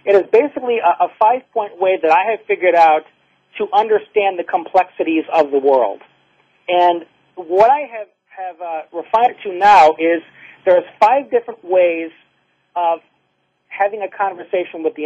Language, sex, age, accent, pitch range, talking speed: English, male, 40-59, American, 165-210 Hz, 160 wpm